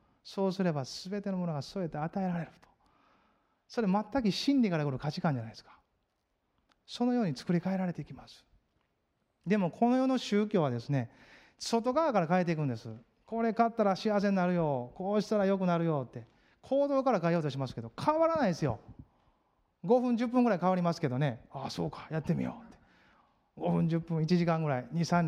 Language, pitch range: Japanese, 140-195 Hz